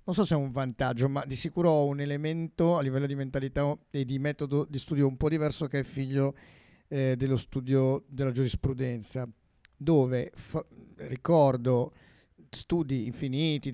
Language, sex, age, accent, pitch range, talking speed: Italian, male, 50-69, native, 130-150 Hz, 160 wpm